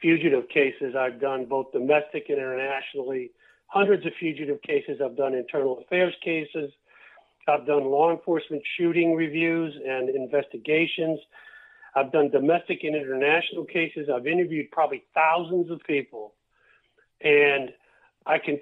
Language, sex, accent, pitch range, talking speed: English, male, American, 145-185 Hz, 130 wpm